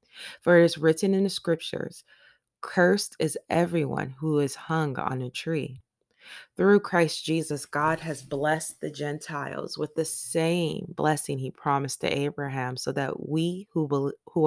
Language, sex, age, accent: English, female, 20-39, American